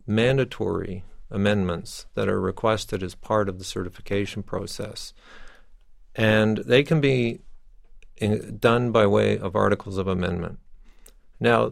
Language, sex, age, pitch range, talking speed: English, male, 50-69, 95-115 Hz, 120 wpm